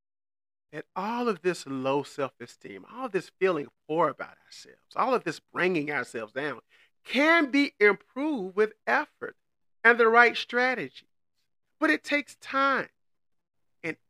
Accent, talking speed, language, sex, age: American, 140 wpm, English, male, 40-59